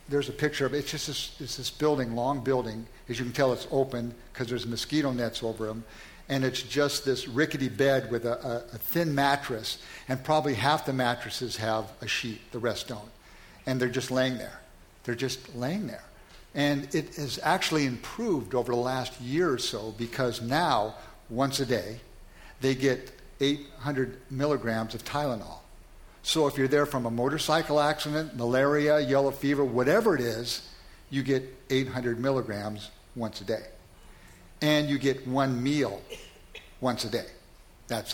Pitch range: 120-145 Hz